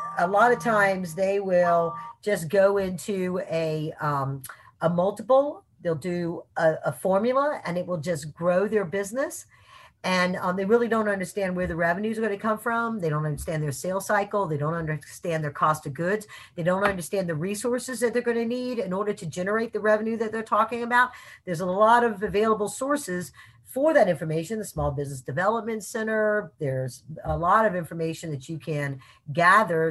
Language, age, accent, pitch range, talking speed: English, 50-69, American, 160-225 Hz, 185 wpm